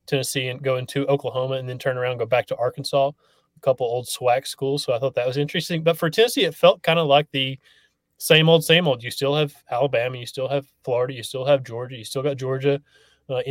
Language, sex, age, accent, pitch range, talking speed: English, male, 30-49, American, 125-150 Hz, 245 wpm